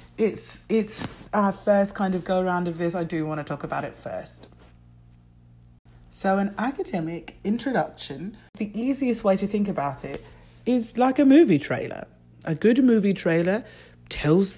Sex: female